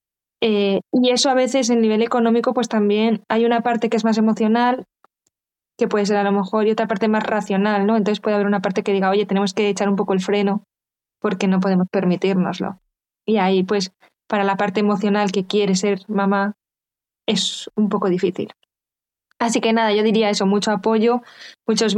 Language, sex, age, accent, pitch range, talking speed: Spanish, female, 20-39, Spanish, 200-230 Hz, 195 wpm